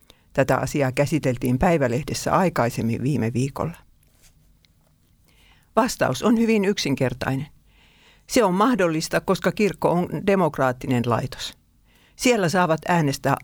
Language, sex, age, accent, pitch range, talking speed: Finnish, female, 60-79, native, 125-180 Hz, 100 wpm